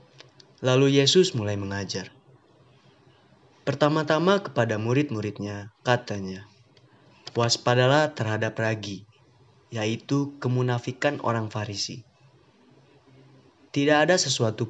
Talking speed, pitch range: 80 wpm, 110-140 Hz